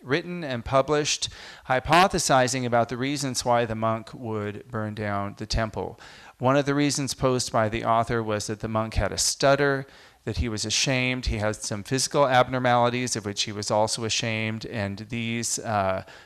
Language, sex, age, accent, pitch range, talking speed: English, male, 30-49, American, 110-135 Hz, 175 wpm